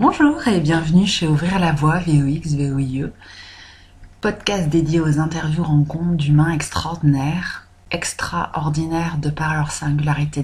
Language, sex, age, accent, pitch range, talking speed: English, female, 30-49, French, 140-165 Hz, 115 wpm